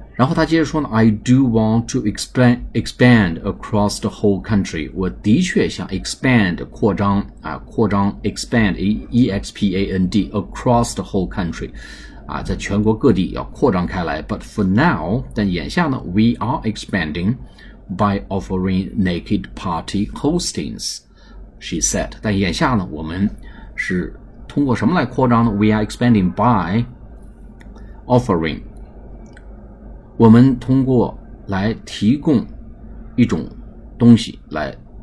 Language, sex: Chinese, male